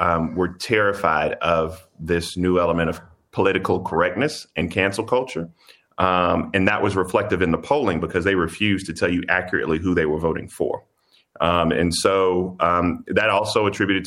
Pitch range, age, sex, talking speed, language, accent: 80-90 Hz, 30-49, male, 170 wpm, English, American